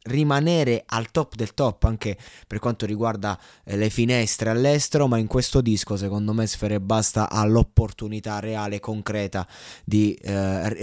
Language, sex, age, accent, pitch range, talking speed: Italian, male, 20-39, native, 105-125 Hz, 140 wpm